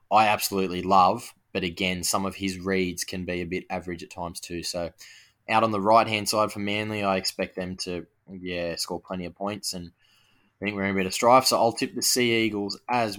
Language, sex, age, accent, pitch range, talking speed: English, male, 10-29, Australian, 95-115 Hz, 225 wpm